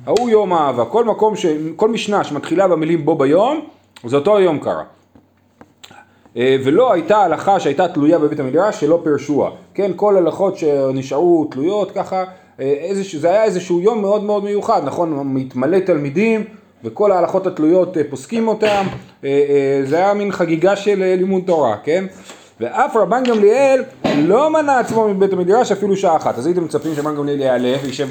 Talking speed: 155 wpm